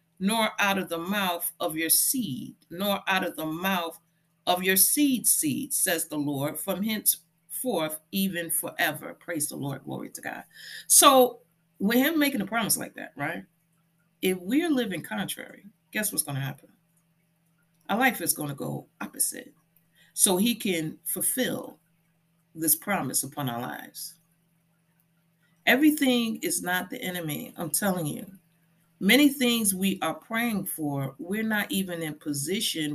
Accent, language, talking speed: American, English, 150 wpm